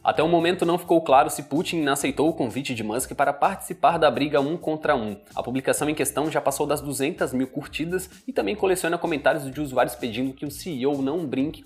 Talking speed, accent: 220 wpm, Brazilian